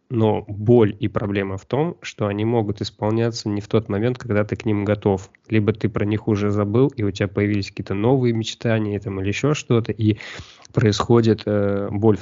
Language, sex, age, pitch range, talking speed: Russian, male, 20-39, 95-110 Hz, 185 wpm